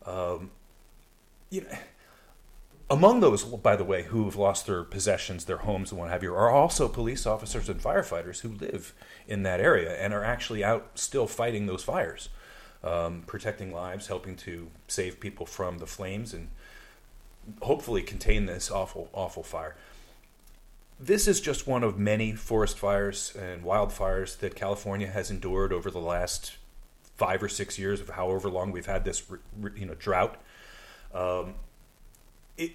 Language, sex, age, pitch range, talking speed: English, male, 30-49, 95-115 Hz, 155 wpm